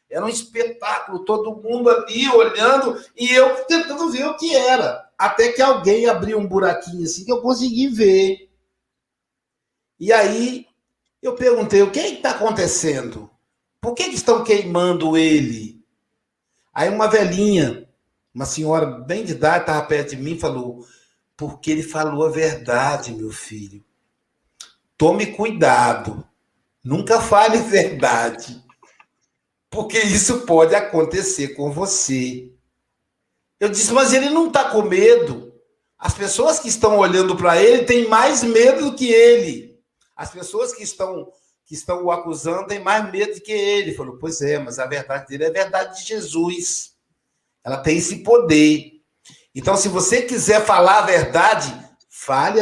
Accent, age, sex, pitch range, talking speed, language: Brazilian, 60-79, male, 155-235 Hz, 150 wpm, Portuguese